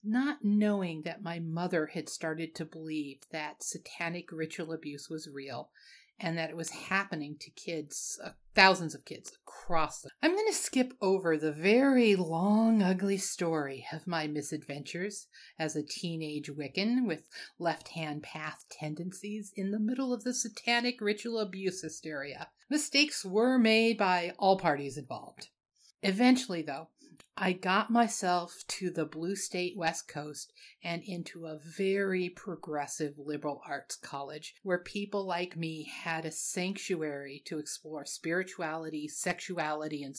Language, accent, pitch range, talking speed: English, American, 155-205 Hz, 145 wpm